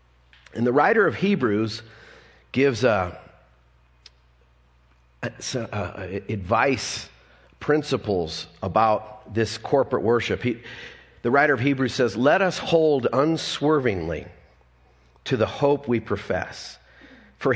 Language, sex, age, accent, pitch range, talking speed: English, male, 40-59, American, 85-135 Hz, 90 wpm